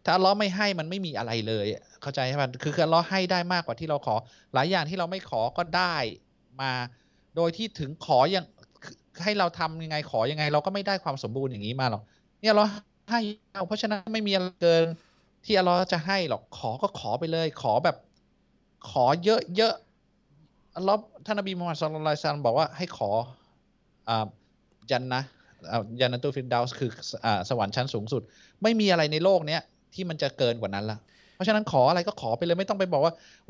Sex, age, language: male, 20-39, Thai